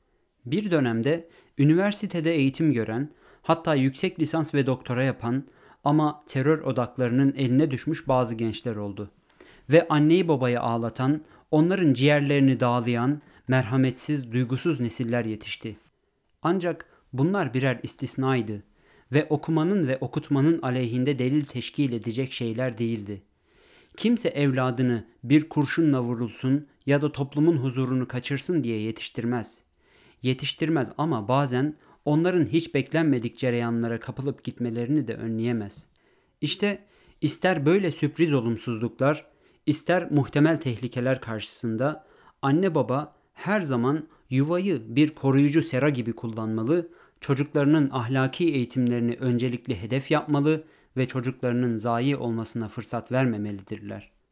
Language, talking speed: Turkish, 110 wpm